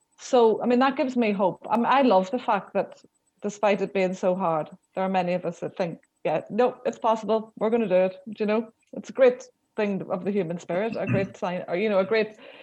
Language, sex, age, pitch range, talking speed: English, female, 30-49, 175-210 Hz, 255 wpm